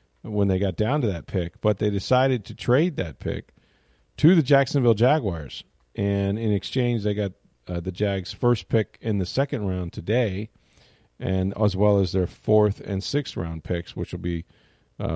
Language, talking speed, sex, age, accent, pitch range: English, 185 wpm, male, 40-59, American, 95-120 Hz